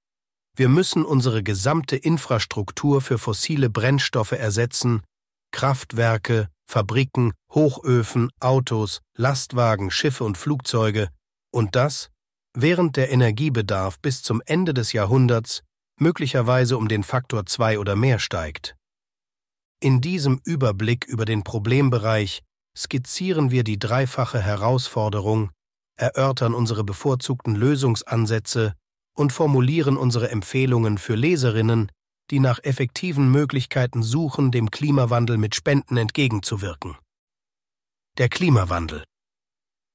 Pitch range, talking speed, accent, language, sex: 110-130 Hz, 100 wpm, German, German, male